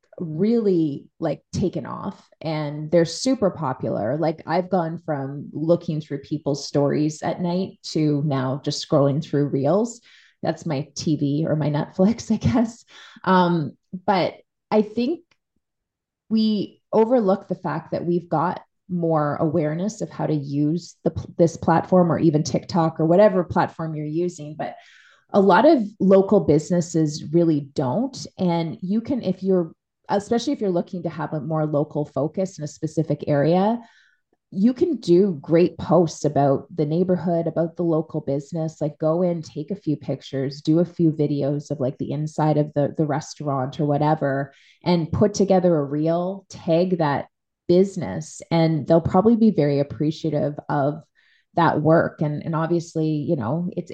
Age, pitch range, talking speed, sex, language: 20-39, 150-180 Hz, 160 wpm, female, English